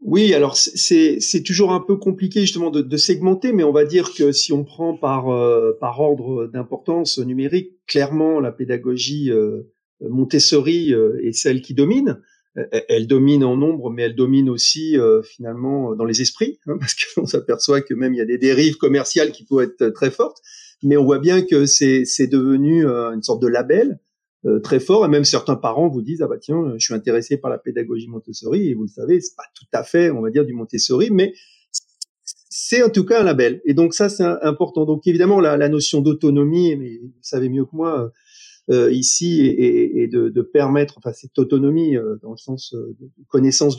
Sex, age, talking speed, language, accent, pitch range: male, 40-59, 210 wpm, French, French, 130-185 Hz